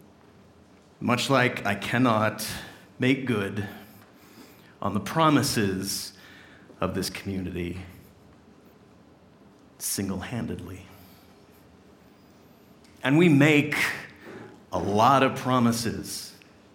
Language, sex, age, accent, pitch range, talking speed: English, male, 40-59, American, 100-130 Hz, 70 wpm